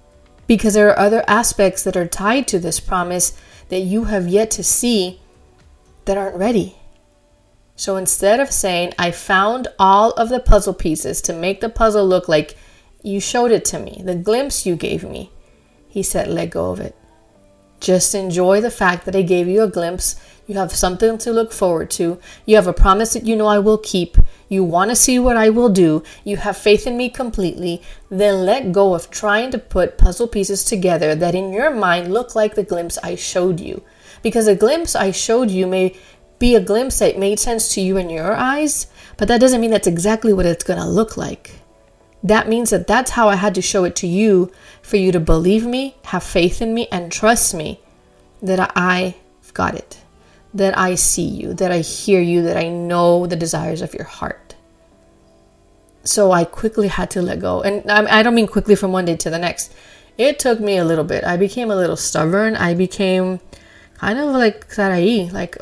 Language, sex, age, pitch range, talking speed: English, female, 30-49, 175-220 Hz, 205 wpm